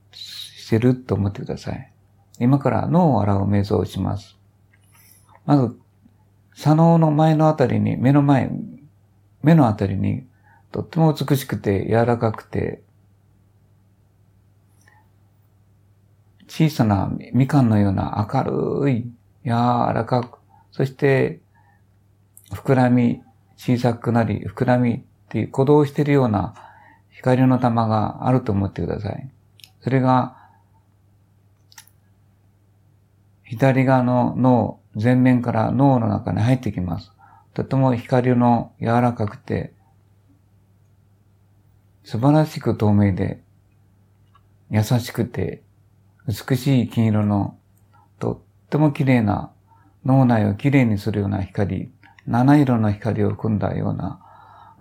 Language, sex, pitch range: Japanese, male, 100-125 Hz